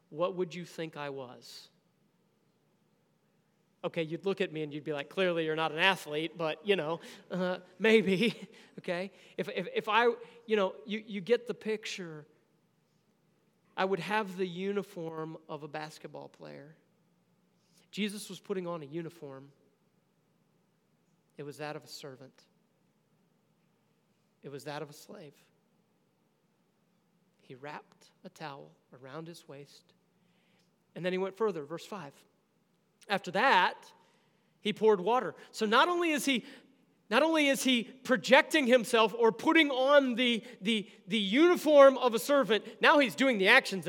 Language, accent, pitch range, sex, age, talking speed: English, American, 170-215 Hz, male, 40-59, 150 wpm